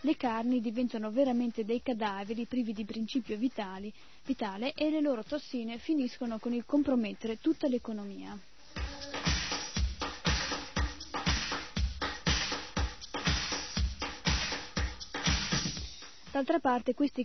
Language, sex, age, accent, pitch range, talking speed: Italian, female, 20-39, native, 220-260 Hz, 80 wpm